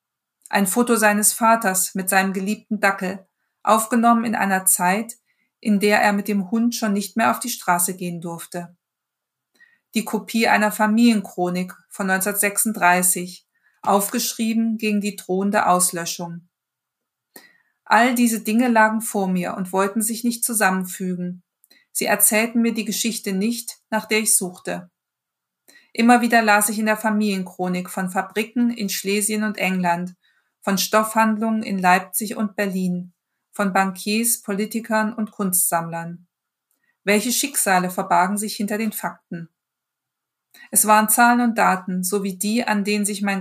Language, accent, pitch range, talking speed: German, German, 185-225 Hz, 140 wpm